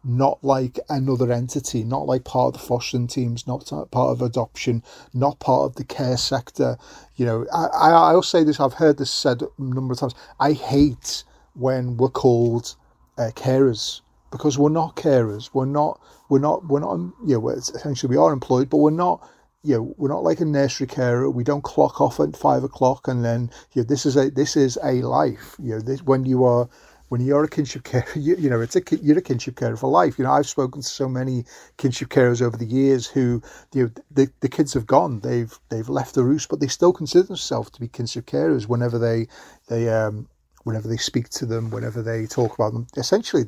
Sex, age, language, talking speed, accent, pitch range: male, 40-59, English, 220 wpm, British, 120-140 Hz